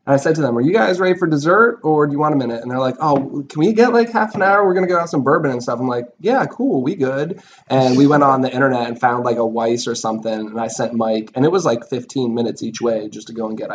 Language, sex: English, male